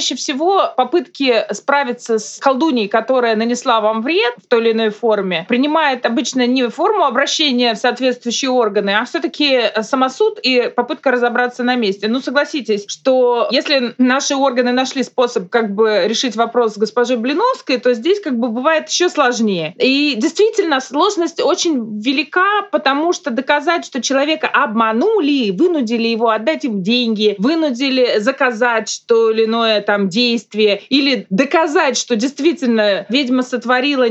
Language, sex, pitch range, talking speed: Russian, female, 225-280 Hz, 145 wpm